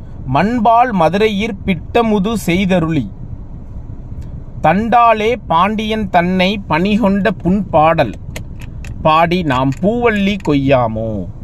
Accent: native